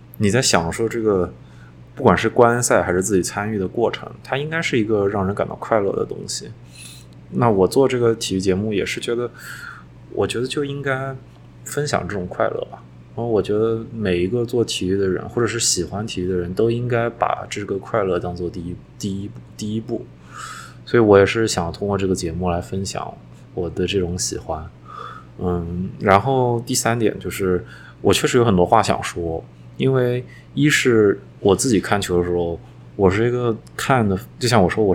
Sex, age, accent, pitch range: male, 20-39, native, 90-115 Hz